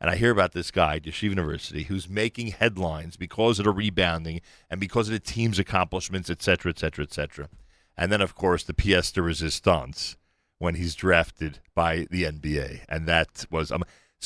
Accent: American